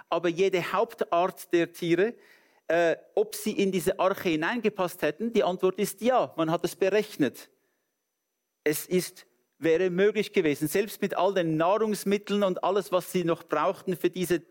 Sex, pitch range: male, 160-210 Hz